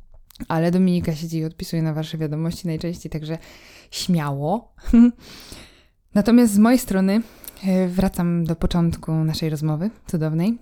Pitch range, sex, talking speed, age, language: 160-185 Hz, female, 120 wpm, 20-39, Polish